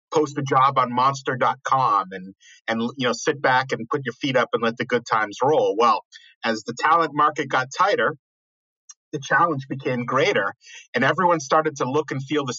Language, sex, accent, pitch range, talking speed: English, male, American, 125-160 Hz, 205 wpm